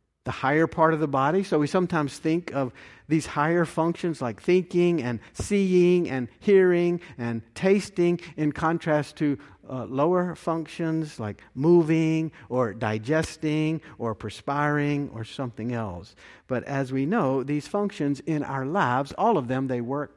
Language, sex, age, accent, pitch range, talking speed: English, male, 50-69, American, 125-160 Hz, 150 wpm